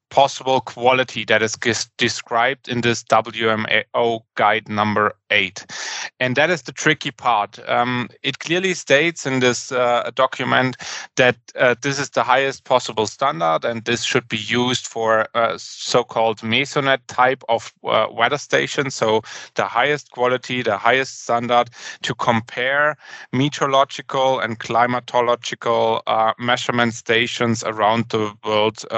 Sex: male